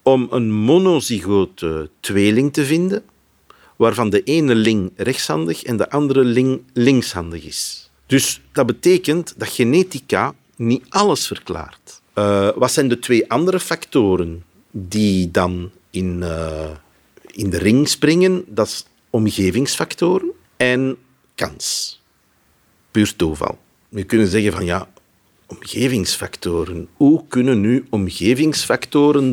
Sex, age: male, 50-69